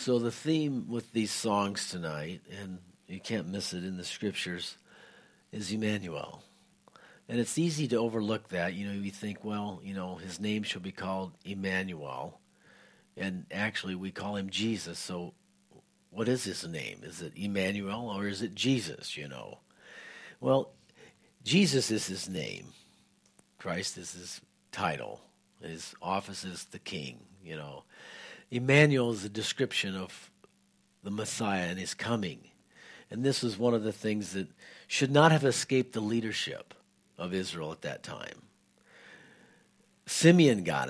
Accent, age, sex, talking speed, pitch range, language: American, 50-69, male, 150 wpm, 95-115 Hz, English